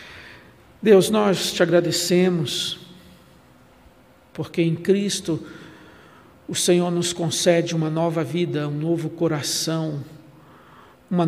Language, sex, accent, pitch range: Portuguese, male, Brazilian, 150-175 Hz